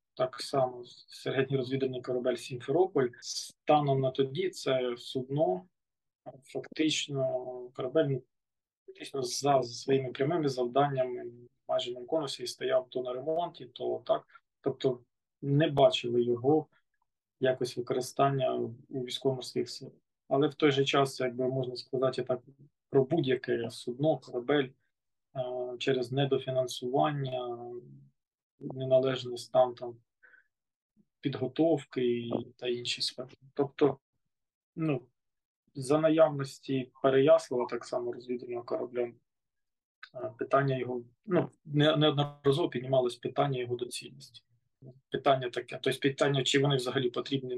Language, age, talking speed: Ukrainian, 20-39, 105 wpm